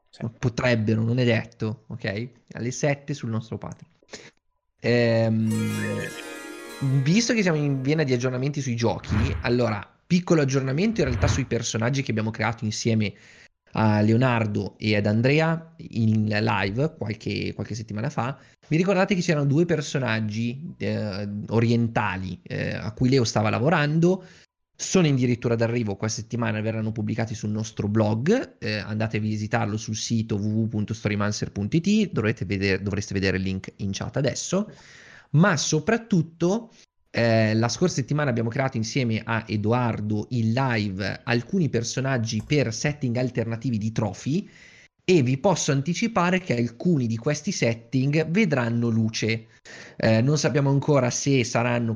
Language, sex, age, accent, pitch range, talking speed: Italian, male, 20-39, native, 110-140 Hz, 135 wpm